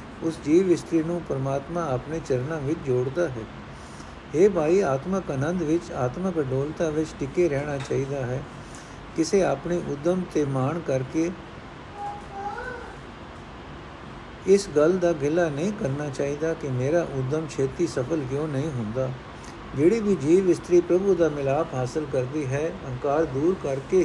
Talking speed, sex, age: 130 wpm, male, 60-79